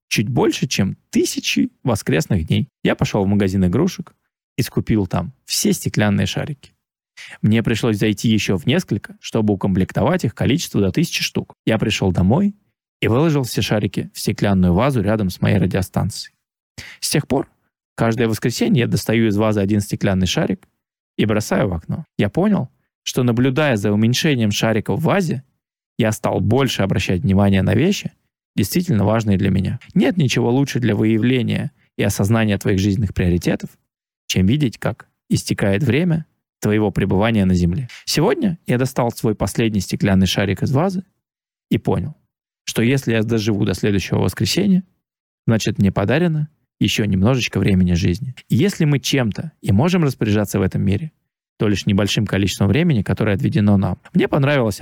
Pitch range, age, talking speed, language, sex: 100-135 Hz, 20-39, 155 wpm, Russian, male